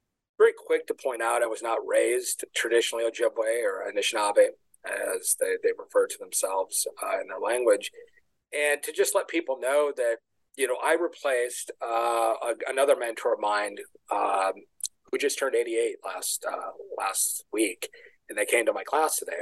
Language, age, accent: English, 40-59, American